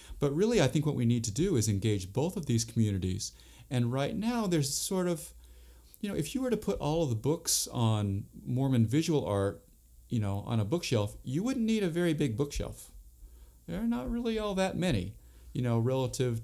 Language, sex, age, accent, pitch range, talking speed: English, male, 40-59, American, 110-150 Hz, 210 wpm